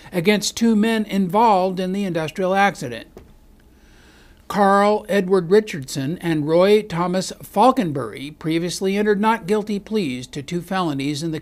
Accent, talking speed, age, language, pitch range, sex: American, 130 wpm, 60-79, English, 150-210 Hz, male